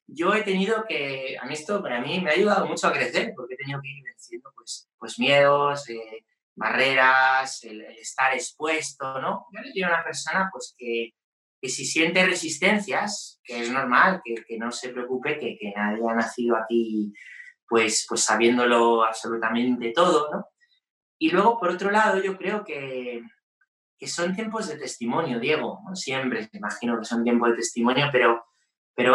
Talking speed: 185 wpm